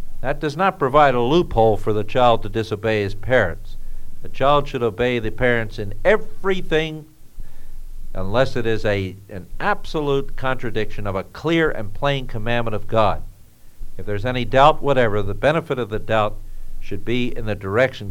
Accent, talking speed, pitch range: American, 165 wpm, 105-140 Hz